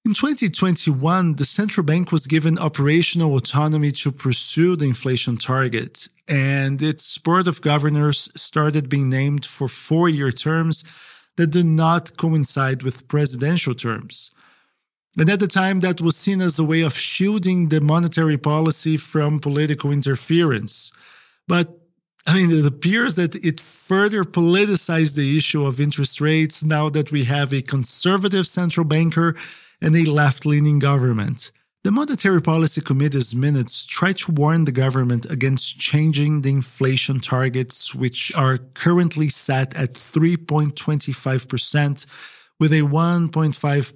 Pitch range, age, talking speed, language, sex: 135-165 Hz, 40-59, 140 wpm, English, male